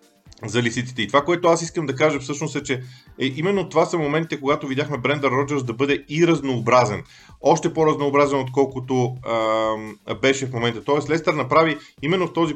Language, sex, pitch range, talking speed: Bulgarian, male, 120-150 Hz, 180 wpm